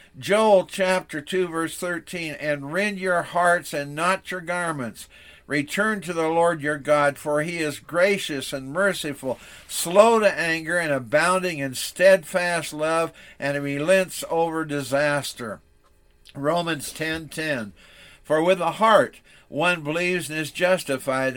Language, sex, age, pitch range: English, male, 60-79, 145-175 Hz